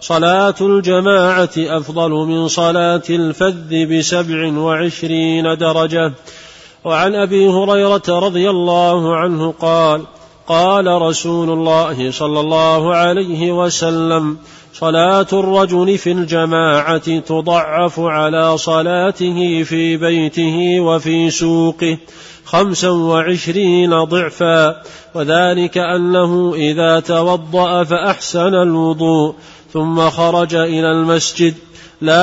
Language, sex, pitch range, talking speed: Arabic, male, 160-180 Hz, 90 wpm